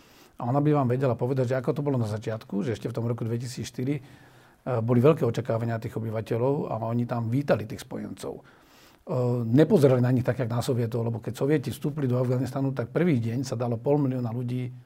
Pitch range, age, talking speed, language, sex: 120-140 Hz, 40-59, 200 wpm, Slovak, male